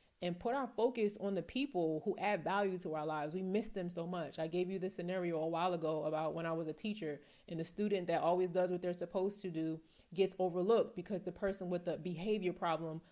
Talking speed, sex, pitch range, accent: 240 wpm, female, 165-190 Hz, American